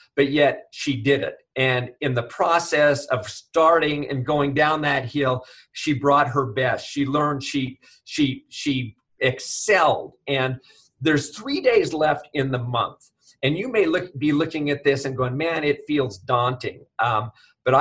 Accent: American